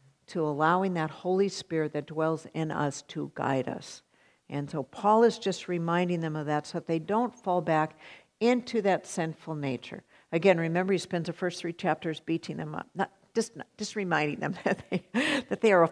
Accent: American